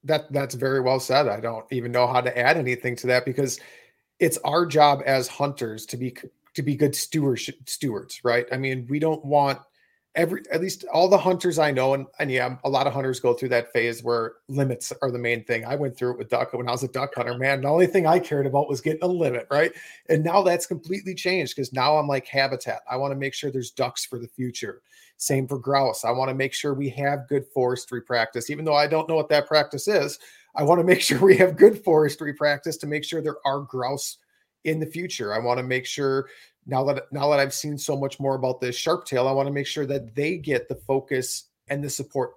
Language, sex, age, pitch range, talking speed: English, male, 40-59, 125-145 Hz, 245 wpm